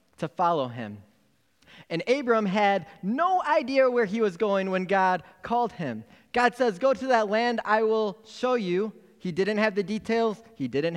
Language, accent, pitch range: English, American, 155-220 Hz